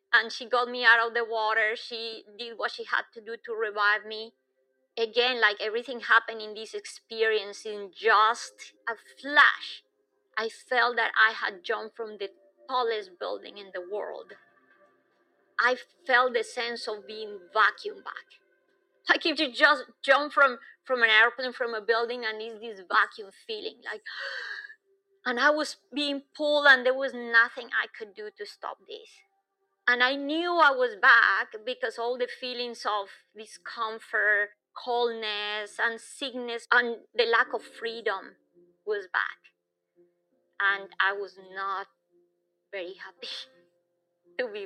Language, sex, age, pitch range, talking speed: English, female, 30-49, 210-285 Hz, 150 wpm